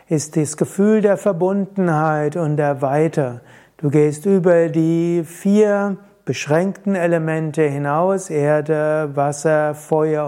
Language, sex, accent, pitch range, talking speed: German, male, German, 150-185 Hz, 110 wpm